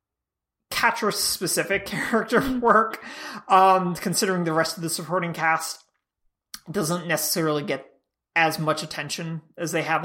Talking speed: 120 wpm